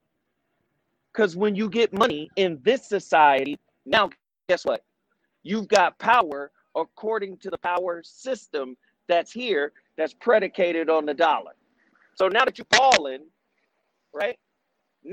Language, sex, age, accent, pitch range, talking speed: English, male, 40-59, American, 175-245 Hz, 125 wpm